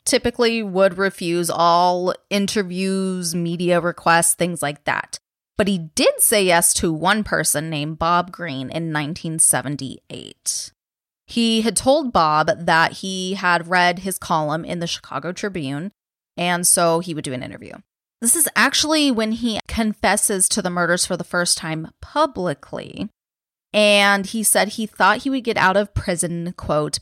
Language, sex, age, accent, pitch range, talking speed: English, female, 20-39, American, 170-210 Hz, 155 wpm